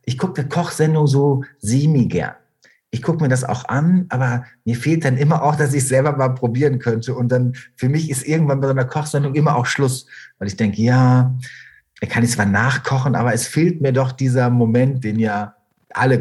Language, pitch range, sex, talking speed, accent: German, 115-145 Hz, male, 210 wpm, German